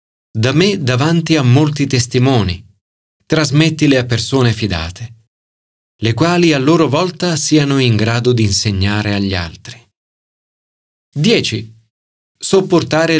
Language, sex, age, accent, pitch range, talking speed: Italian, male, 40-59, native, 105-155 Hz, 110 wpm